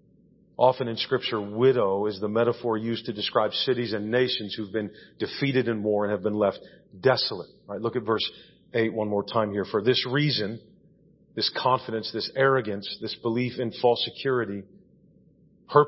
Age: 40-59